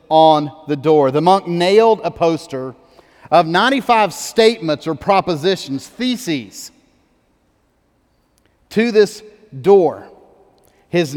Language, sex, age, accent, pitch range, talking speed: English, male, 40-59, American, 155-195 Hz, 95 wpm